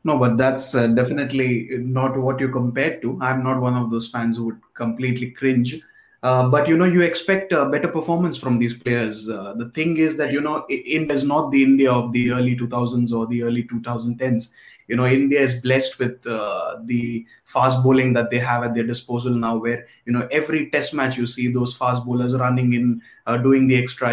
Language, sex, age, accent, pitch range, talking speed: English, male, 20-39, Indian, 120-145 Hz, 215 wpm